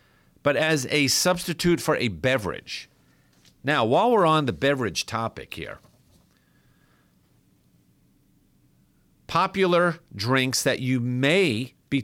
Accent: American